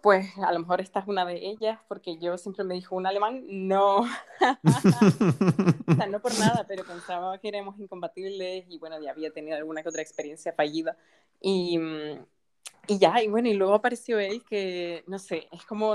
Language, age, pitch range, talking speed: Spanish, 20-39, 165-200 Hz, 185 wpm